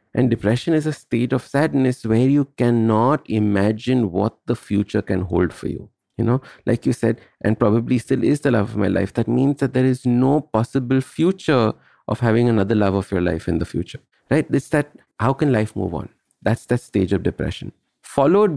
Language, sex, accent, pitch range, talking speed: English, male, Indian, 105-135 Hz, 205 wpm